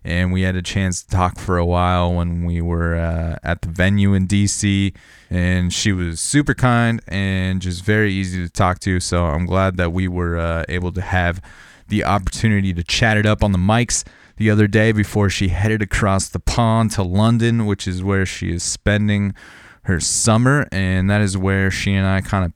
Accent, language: American, English